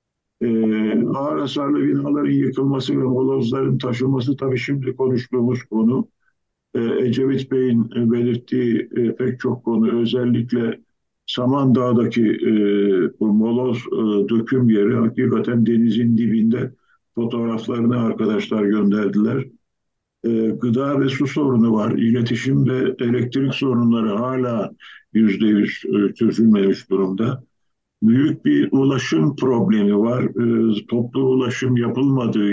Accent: native